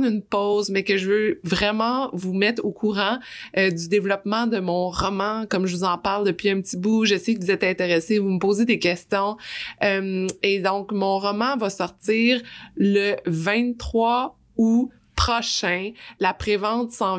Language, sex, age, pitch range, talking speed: French, female, 20-39, 190-220 Hz, 180 wpm